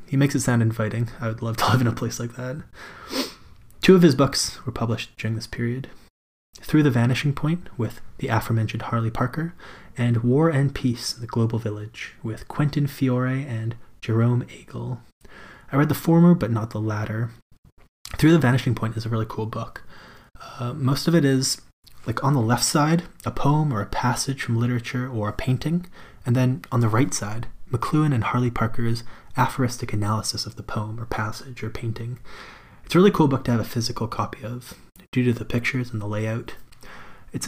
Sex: male